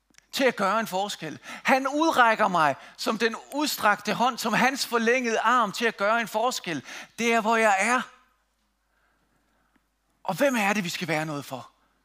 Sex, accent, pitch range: male, native, 195-255 Hz